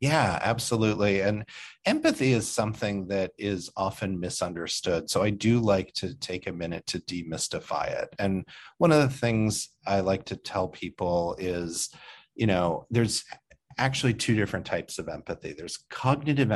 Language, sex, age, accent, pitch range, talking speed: English, male, 40-59, American, 95-120 Hz, 155 wpm